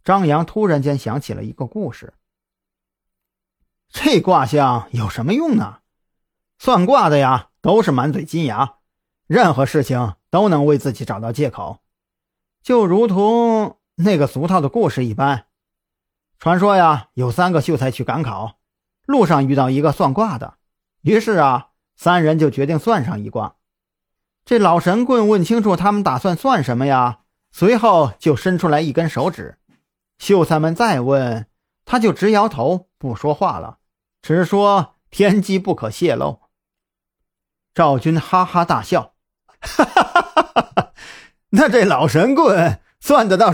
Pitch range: 135-205 Hz